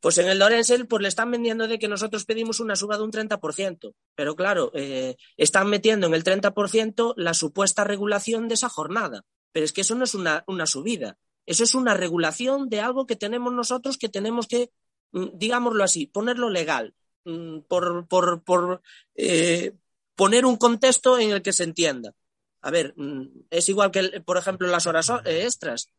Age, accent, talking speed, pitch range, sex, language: 30-49, Spanish, 180 wpm, 185-245 Hz, male, Spanish